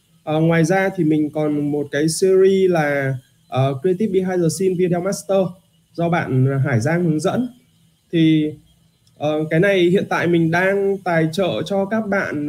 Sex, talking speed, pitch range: male, 175 wpm, 140-185 Hz